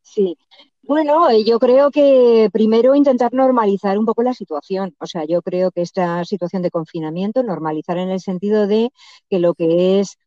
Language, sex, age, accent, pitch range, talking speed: Spanish, female, 50-69, Spanish, 160-205 Hz, 175 wpm